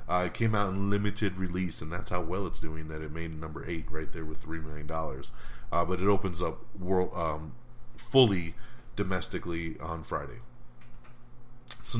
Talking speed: 170 wpm